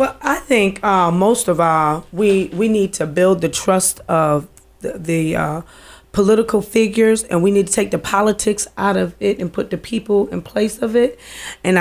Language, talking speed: English, 200 wpm